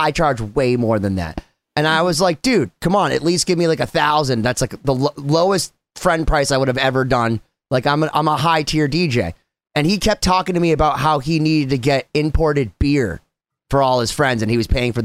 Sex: male